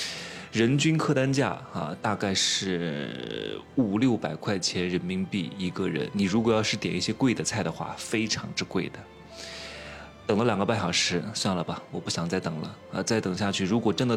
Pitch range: 95-140 Hz